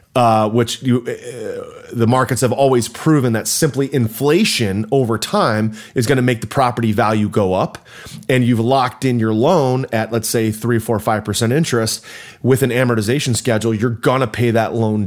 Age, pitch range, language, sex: 30-49, 110-135 Hz, English, male